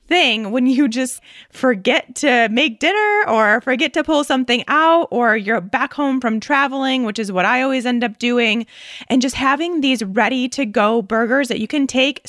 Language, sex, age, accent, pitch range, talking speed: English, female, 20-39, American, 225-275 Hz, 185 wpm